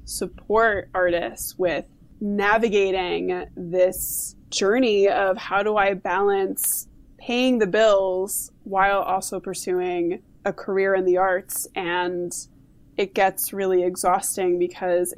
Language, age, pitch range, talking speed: English, 20-39, 185-215 Hz, 110 wpm